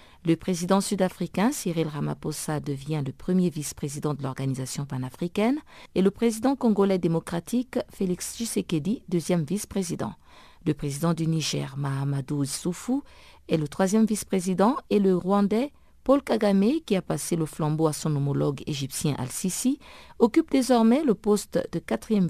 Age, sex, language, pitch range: 50-69, female, French, 160-215 Hz